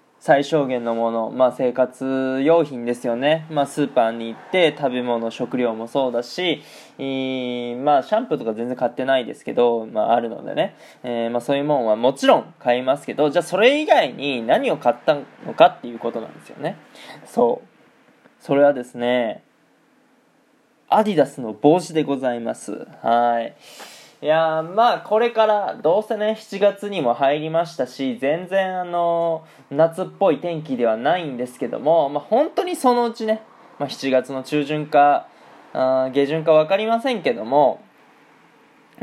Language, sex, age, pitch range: Japanese, male, 20-39, 125-200 Hz